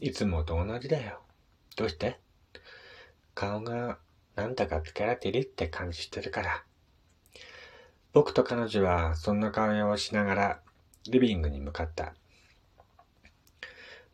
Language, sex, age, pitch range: Japanese, male, 40-59, 85-105 Hz